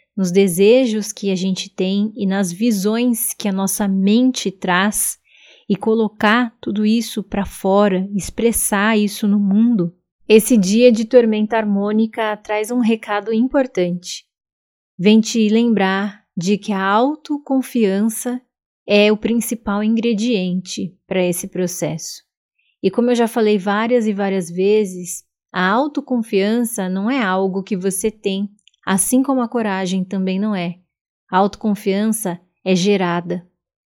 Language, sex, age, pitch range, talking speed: Portuguese, female, 20-39, 195-235 Hz, 135 wpm